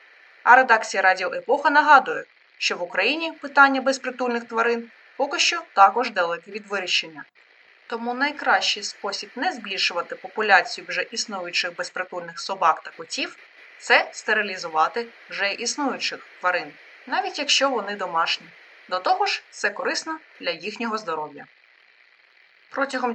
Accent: native